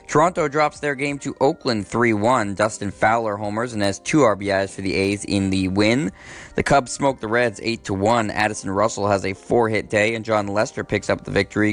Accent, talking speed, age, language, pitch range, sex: American, 200 wpm, 20-39, English, 100-115 Hz, male